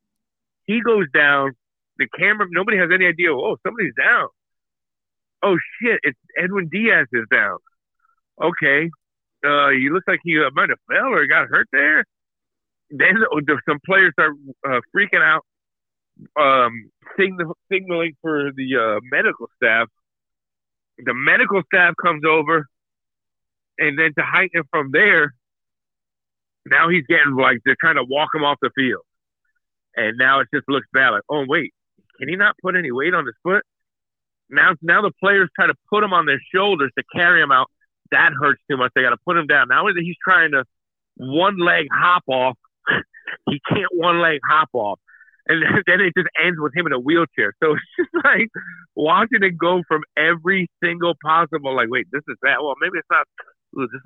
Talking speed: 175 wpm